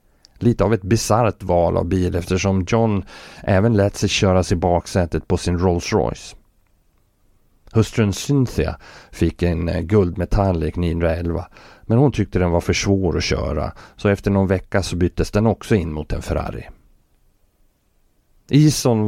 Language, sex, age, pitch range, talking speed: Swedish, male, 30-49, 85-105 Hz, 150 wpm